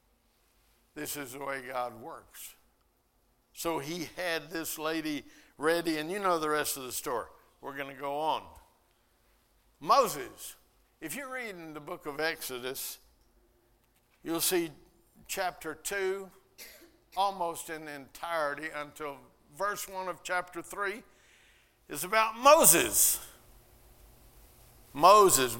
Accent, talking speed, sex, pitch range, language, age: American, 115 wpm, male, 150-200 Hz, English, 60-79